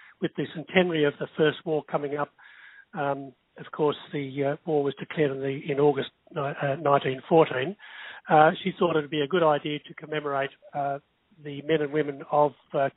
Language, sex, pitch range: English, male, 145-170 Hz